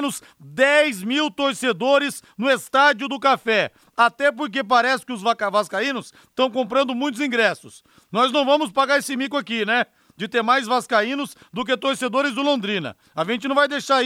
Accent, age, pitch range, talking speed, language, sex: Brazilian, 40-59, 205-260 Hz, 170 wpm, Portuguese, male